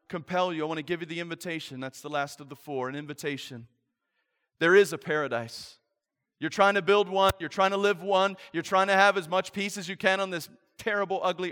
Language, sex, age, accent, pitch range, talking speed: English, male, 30-49, American, 150-190 Hz, 235 wpm